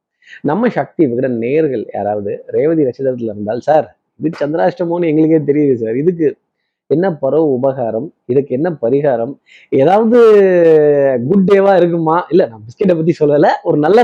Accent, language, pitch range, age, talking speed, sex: native, Tamil, 130-175 Hz, 20-39, 135 wpm, male